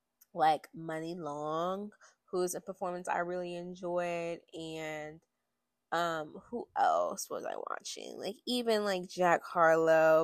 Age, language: 20-39, English